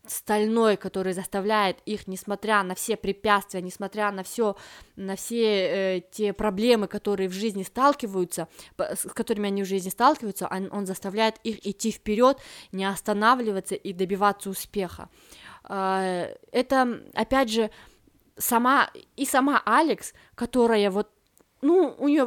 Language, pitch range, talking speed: Russian, 195-255 Hz, 130 wpm